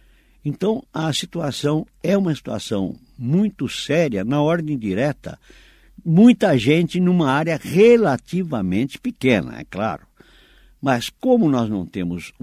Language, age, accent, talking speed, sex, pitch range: Portuguese, 60-79, Brazilian, 115 wpm, male, 100-160 Hz